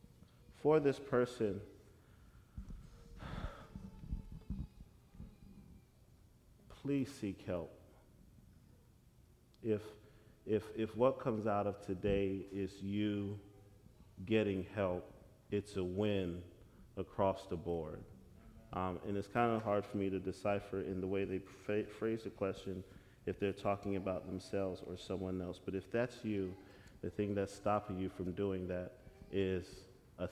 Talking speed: 125 wpm